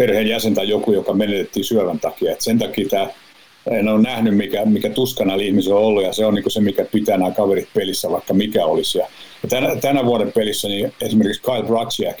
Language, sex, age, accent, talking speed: Finnish, male, 60-79, native, 200 wpm